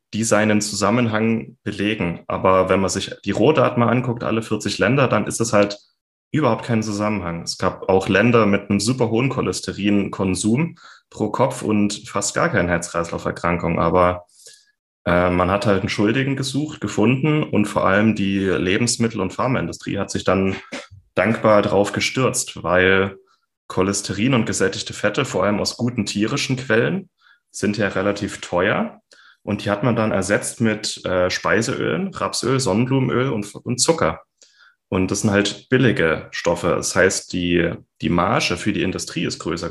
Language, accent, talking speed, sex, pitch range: German, German, 160 wpm, male, 95-115 Hz